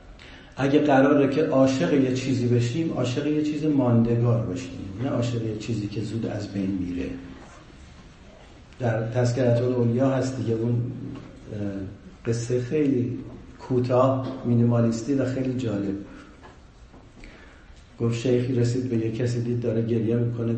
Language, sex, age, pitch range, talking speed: Persian, male, 50-69, 115-140 Hz, 130 wpm